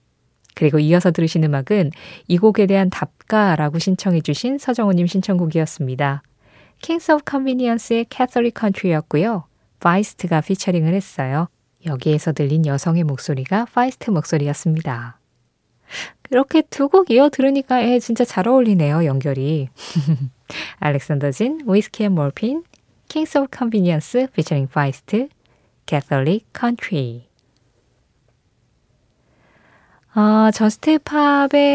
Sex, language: female, Korean